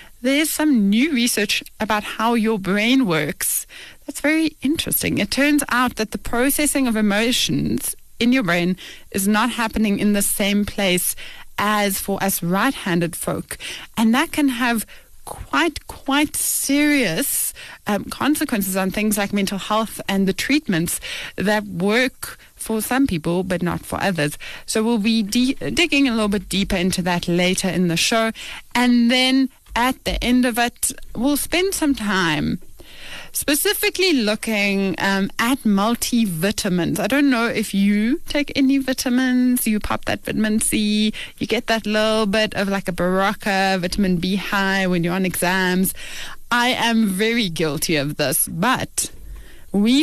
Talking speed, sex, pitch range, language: 155 wpm, female, 195-255 Hz, English